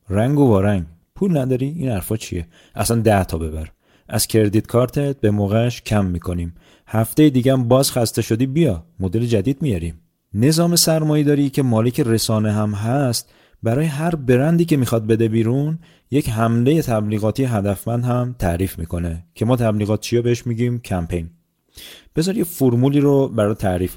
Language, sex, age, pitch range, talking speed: Persian, male, 30-49, 105-135 Hz, 160 wpm